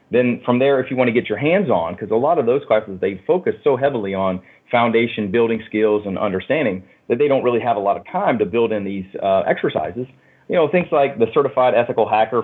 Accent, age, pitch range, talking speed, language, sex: American, 40-59, 105-125 Hz, 240 wpm, English, male